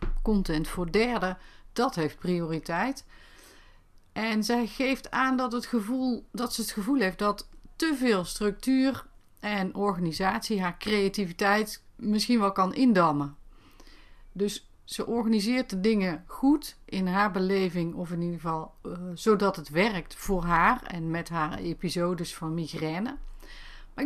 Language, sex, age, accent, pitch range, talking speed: Dutch, female, 40-59, Dutch, 170-230 Hz, 135 wpm